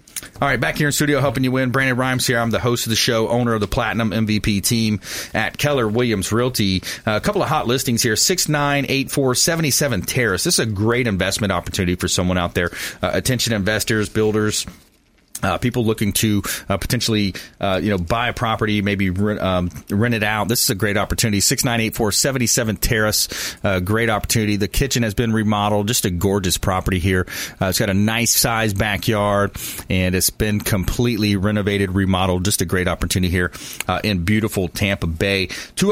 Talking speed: 195 wpm